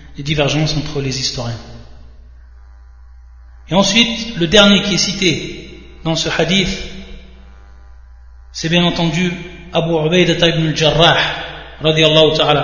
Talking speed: 115 wpm